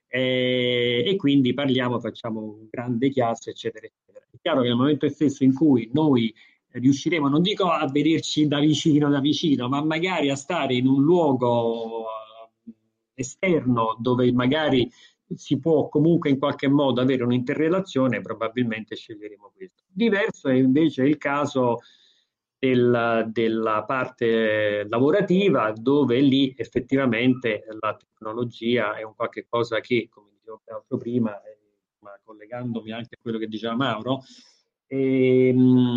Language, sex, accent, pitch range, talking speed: Italian, male, native, 115-145 Hz, 130 wpm